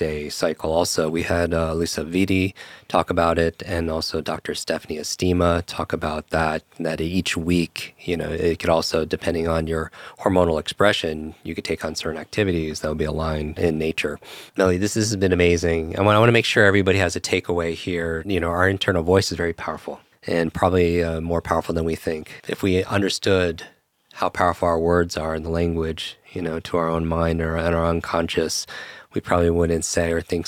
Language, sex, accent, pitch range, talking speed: English, male, American, 80-90 Hz, 205 wpm